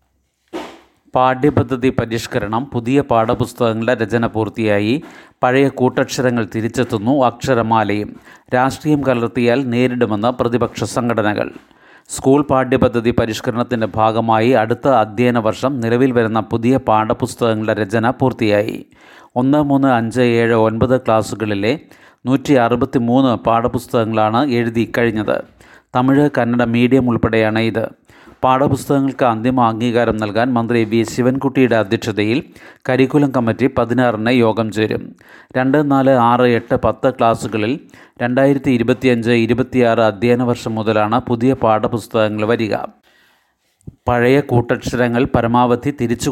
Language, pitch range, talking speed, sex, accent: Malayalam, 110-130 Hz, 95 wpm, male, native